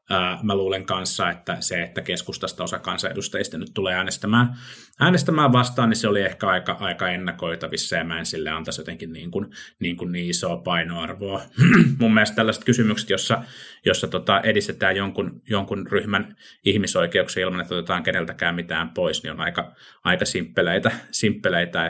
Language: Finnish